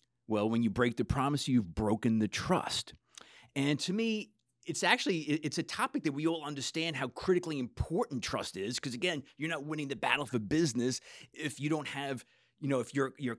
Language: English